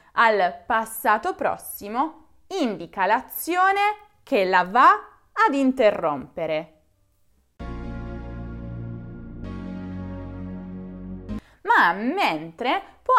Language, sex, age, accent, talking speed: Italian, female, 20-39, native, 60 wpm